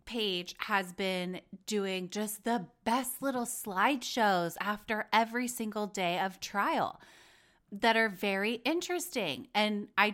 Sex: female